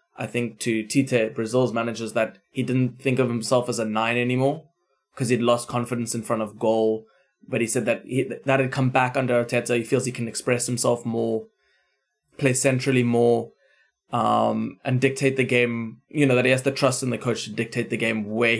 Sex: male